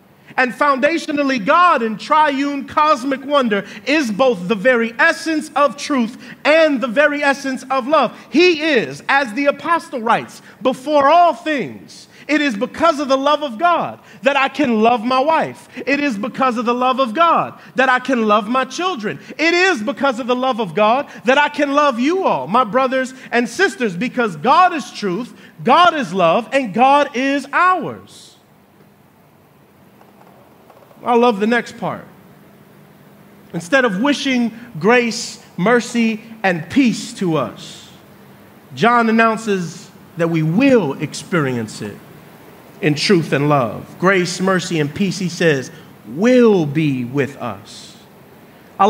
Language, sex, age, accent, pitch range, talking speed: English, male, 40-59, American, 195-280 Hz, 150 wpm